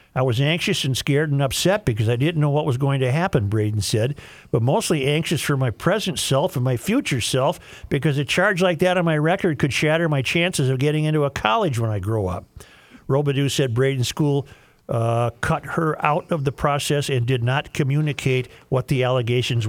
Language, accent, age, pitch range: English, American, 50-69, 120-150 Hz